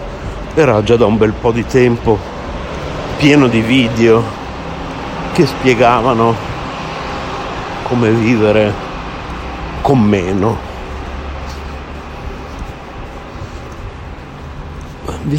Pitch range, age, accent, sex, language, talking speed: 80-110 Hz, 60-79, native, male, Italian, 70 wpm